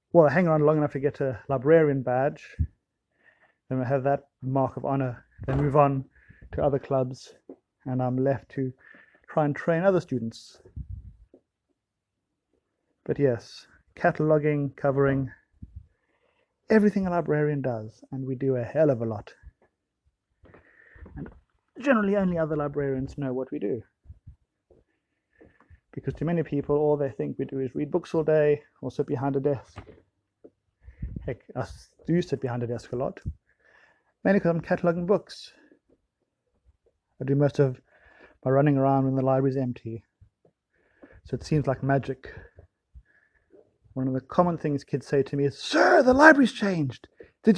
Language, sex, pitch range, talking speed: English, male, 130-155 Hz, 150 wpm